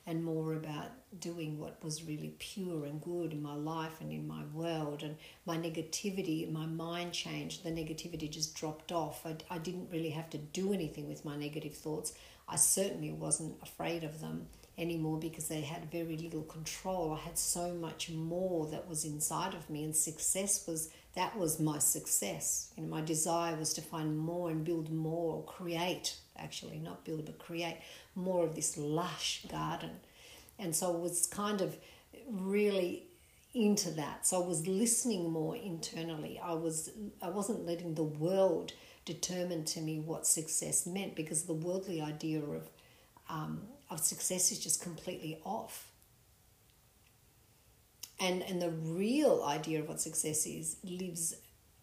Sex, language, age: female, English, 50-69